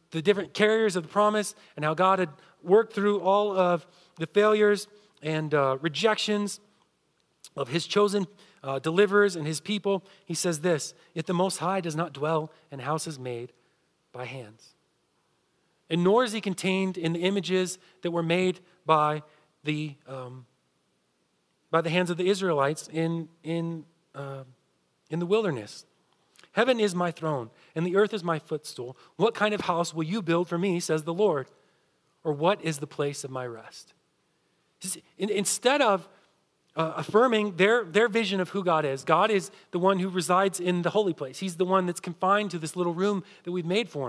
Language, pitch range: English, 155-200 Hz